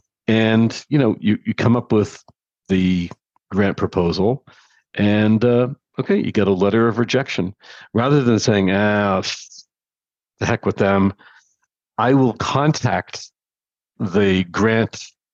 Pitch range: 95-115 Hz